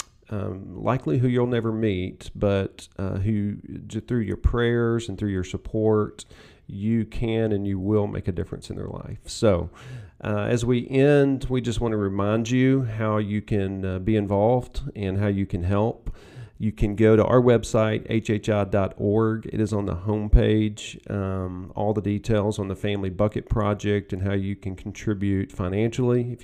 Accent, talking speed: American, 175 wpm